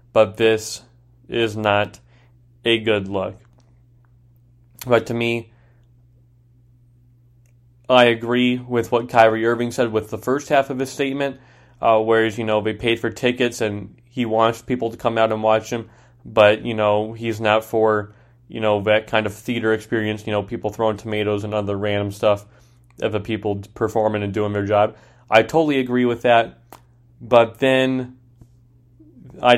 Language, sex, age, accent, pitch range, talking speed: English, male, 20-39, American, 110-125 Hz, 160 wpm